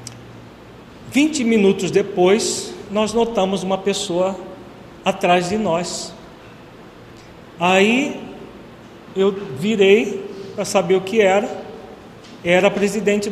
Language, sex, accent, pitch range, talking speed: Portuguese, male, Brazilian, 175-225 Hz, 90 wpm